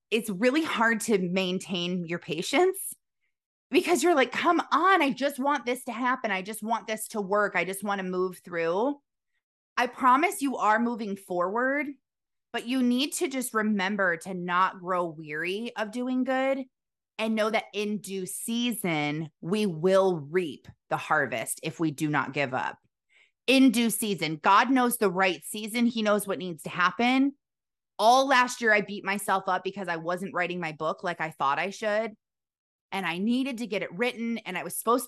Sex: female